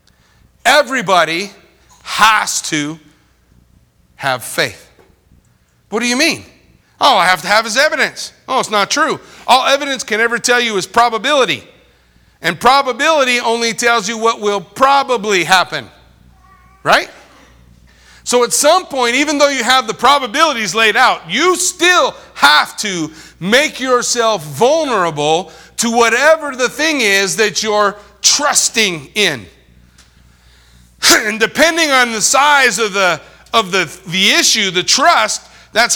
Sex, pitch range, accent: male, 185-255 Hz, American